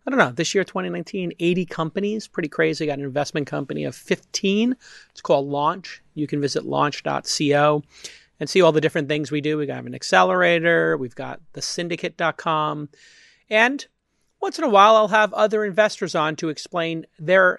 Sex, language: male, English